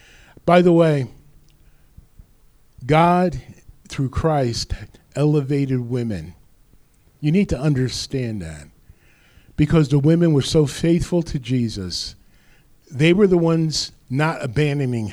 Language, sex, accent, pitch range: English, male, American, 130-175 Hz